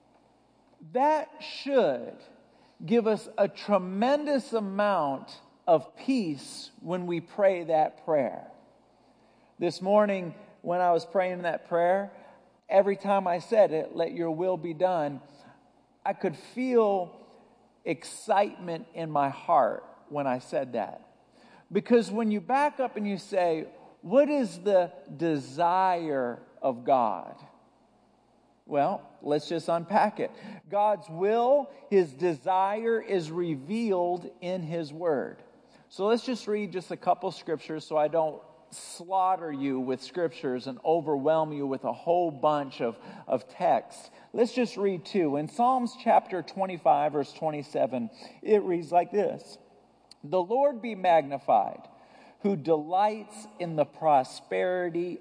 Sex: male